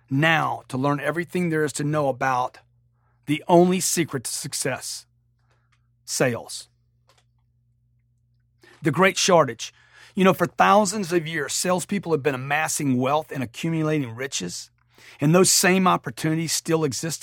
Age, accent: 40-59, American